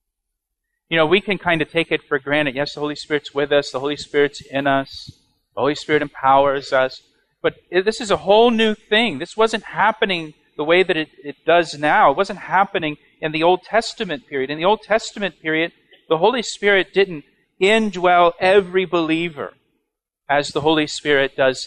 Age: 40-59